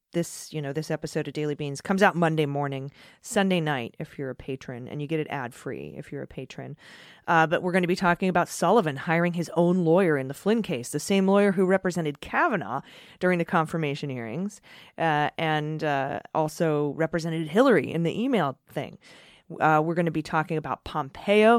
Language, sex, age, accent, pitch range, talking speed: English, female, 30-49, American, 145-180 Hz, 205 wpm